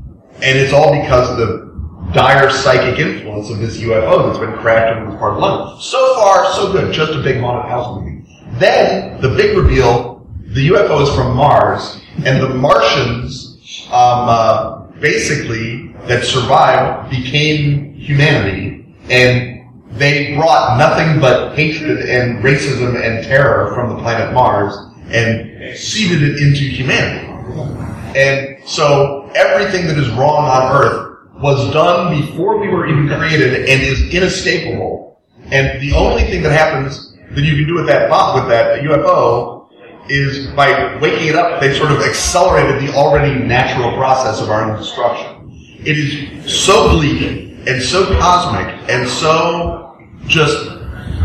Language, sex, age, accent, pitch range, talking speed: English, male, 30-49, American, 115-150 Hz, 150 wpm